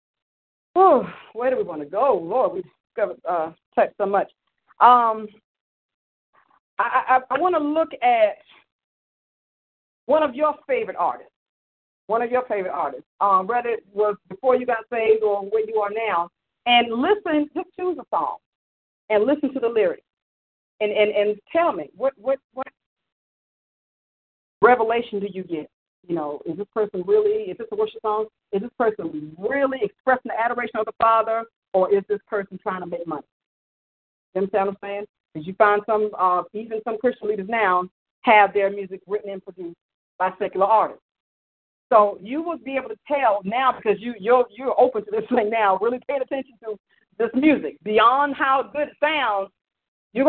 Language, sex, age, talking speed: English, female, 40-59, 175 wpm